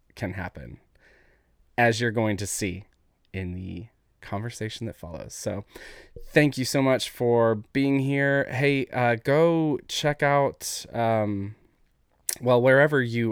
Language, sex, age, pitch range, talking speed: English, male, 20-39, 100-130 Hz, 130 wpm